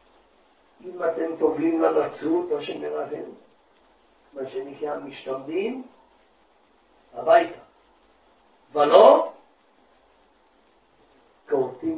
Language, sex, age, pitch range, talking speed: Hebrew, male, 60-79, 145-245 Hz, 60 wpm